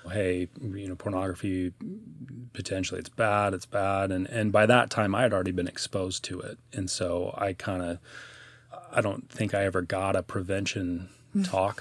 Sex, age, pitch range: male, 30-49, 90-110 Hz